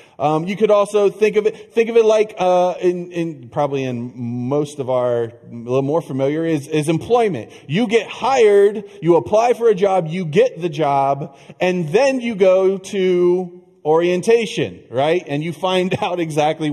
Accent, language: American, English